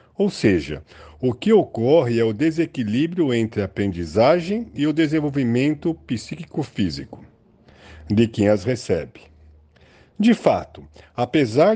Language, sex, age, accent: Portuguese, male, 50-69, Brazilian